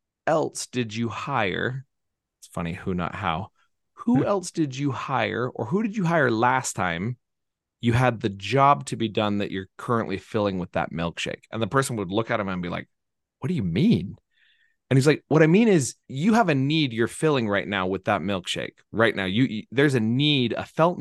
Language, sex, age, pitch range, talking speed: English, male, 30-49, 115-150 Hz, 215 wpm